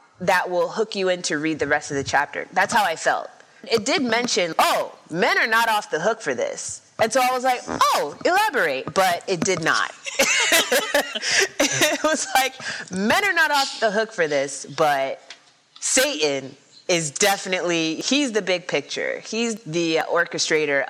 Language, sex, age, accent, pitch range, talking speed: English, female, 30-49, American, 155-235 Hz, 175 wpm